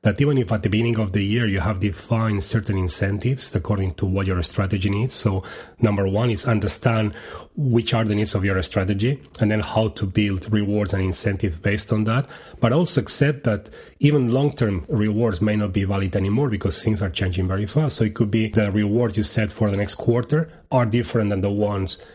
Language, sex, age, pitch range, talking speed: English, male, 30-49, 100-120 Hz, 215 wpm